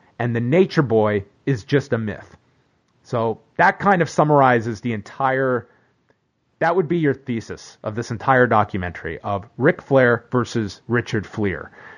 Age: 30-49